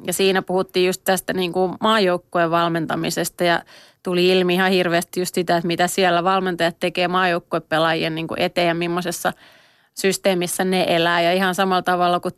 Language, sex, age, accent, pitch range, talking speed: Finnish, female, 30-49, native, 180-195 Hz, 160 wpm